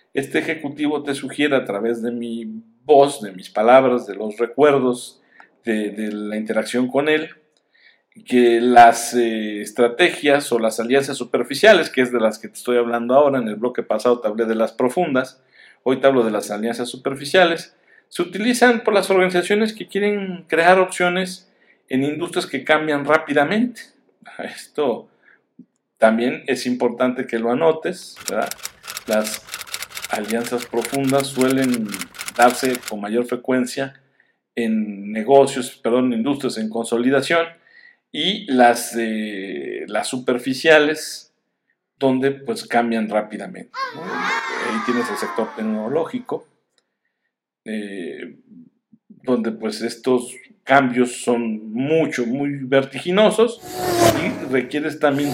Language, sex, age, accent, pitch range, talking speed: Spanish, male, 50-69, Mexican, 115-150 Hz, 125 wpm